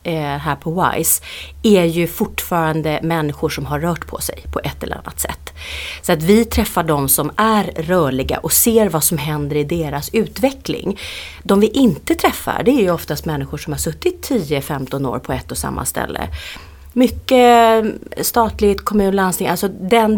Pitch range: 150-220 Hz